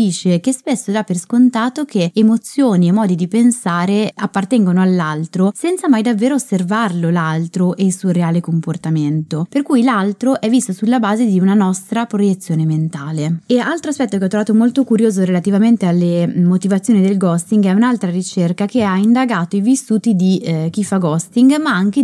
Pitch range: 175-230 Hz